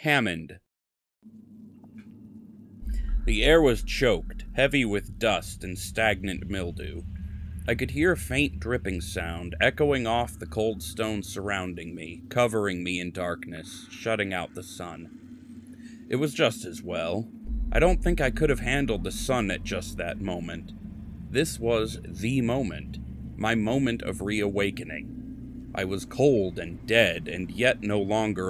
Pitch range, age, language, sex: 90-120 Hz, 30-49, English, male